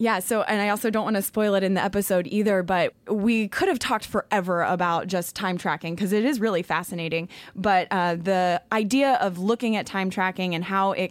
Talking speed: 220 wpm